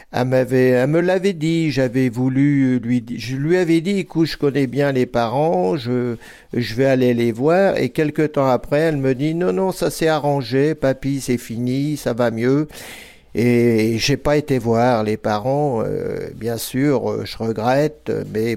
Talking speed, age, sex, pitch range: 185 wpm, 50-69, male, 115-140 Hz